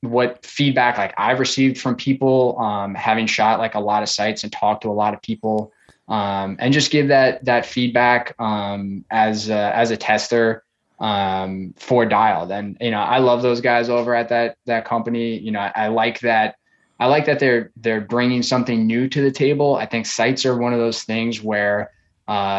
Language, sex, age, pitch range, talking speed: English, male, 10-29, 110-125 Hz, 205 wpm